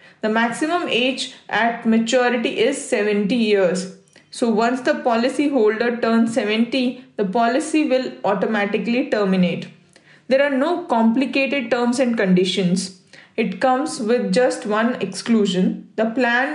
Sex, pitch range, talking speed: female, 215-270 Hz, 125 wpm